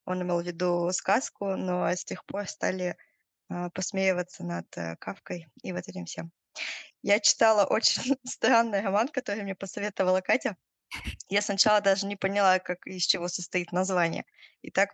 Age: 20-39